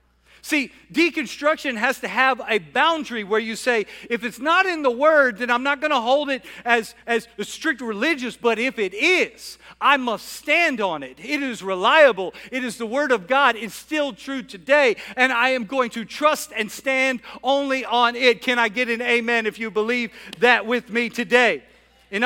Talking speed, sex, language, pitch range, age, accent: 195 wpm, male, English, 200-270 Hz, 50-69, American